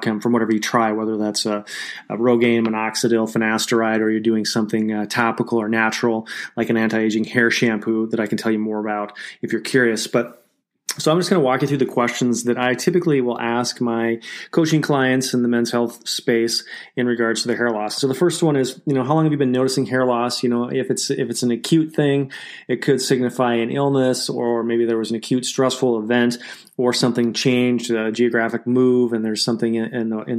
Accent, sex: American, male